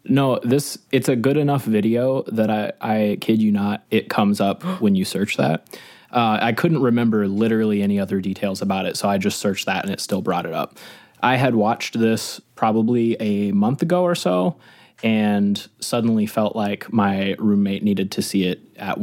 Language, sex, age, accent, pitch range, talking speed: English, male, 20-39, American, 105-130 Hz, 195 wpm